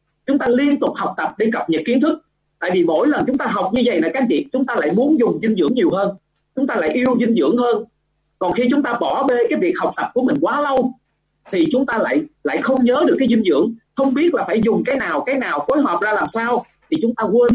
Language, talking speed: Vietnamese, 285 wpm